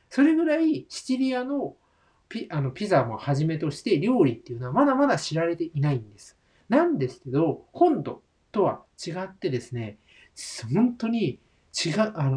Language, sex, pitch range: Japanese, male, 125-210 Hz